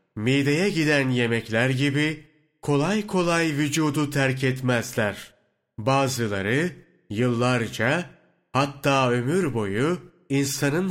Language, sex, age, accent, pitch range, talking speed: Turkish, male, 40-59, native, 125-155 Hz, 85 wpm